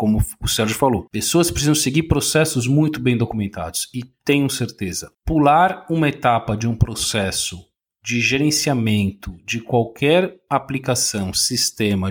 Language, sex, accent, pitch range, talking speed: Portuguese, male, Brazilian, 115-165 Hz, 130 wpm